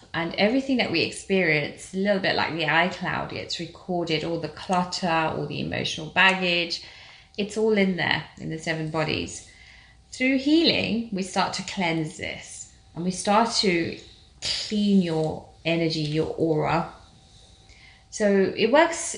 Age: 20-39